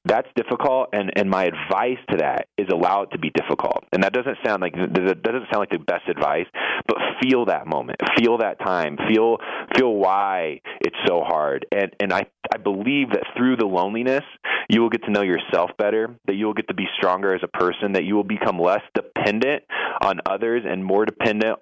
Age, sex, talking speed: 30-49, male, 210 wpm